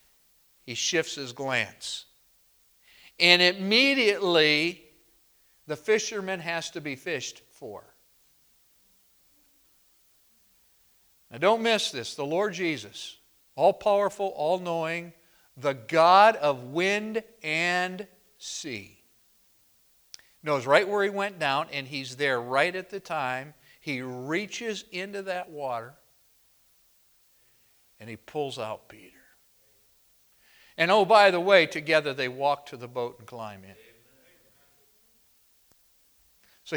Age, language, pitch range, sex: 50-69, English, 135-195 Hz, male